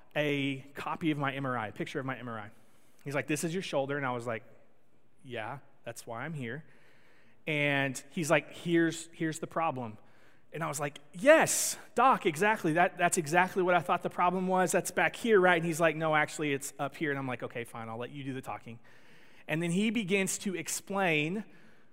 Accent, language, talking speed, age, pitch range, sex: American, English, 210 wpm, 30-49, 145-190 Hz, male